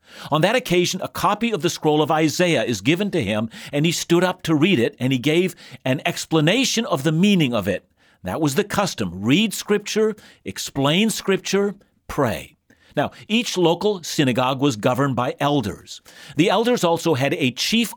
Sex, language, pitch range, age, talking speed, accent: male, English, 140-200 Hz, 50-69, 180 wpm, American